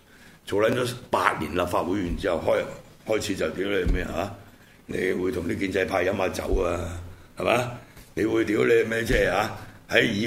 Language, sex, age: Chinese, male, 60-79